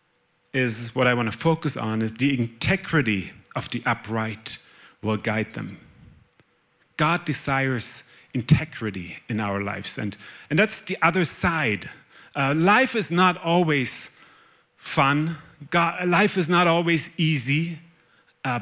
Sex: male